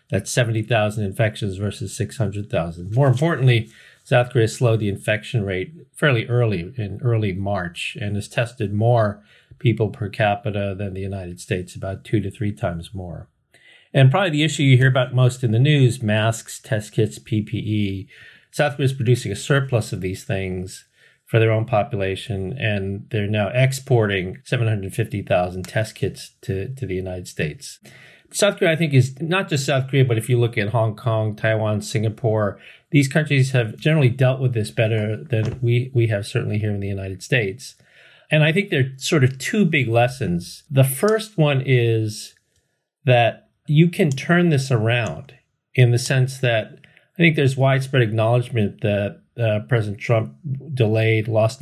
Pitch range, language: 105-130 Hz, English